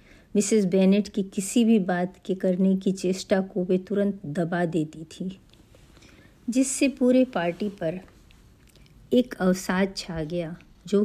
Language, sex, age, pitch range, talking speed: Hindi, female, 50-69, 185-210 Hz, 135 wpm